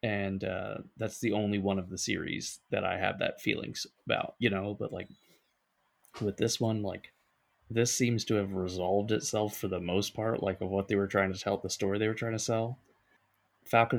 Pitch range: 95-110 Hz